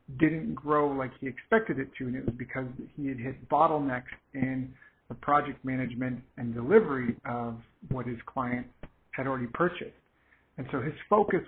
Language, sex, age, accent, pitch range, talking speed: English, male, 50-69, American, 130-150 Hz, 165 wpm